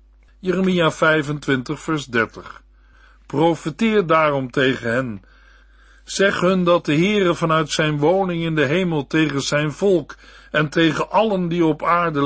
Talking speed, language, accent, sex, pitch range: 135 wpm, Dutch, Dutch, male, 130-175 Hz